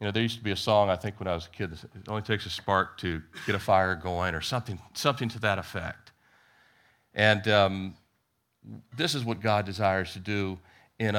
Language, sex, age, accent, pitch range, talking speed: English, male, 40-59, American, 100-120 Hz, 220 wpm